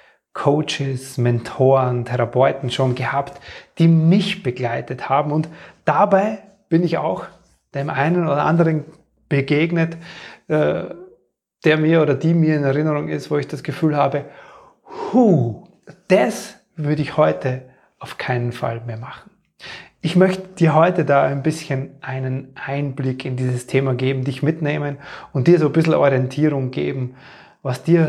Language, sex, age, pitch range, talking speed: German, male, 30-49, 135-170 Hz, 140 wpm